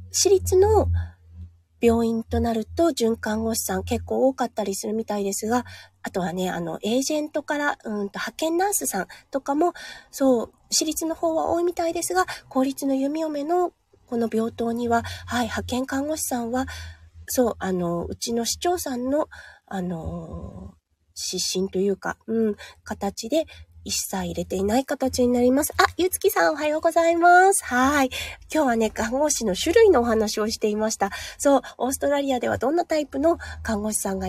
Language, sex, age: Japanese, female, 20-39